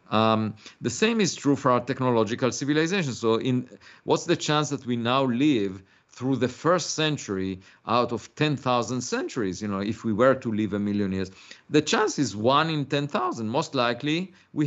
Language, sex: English, male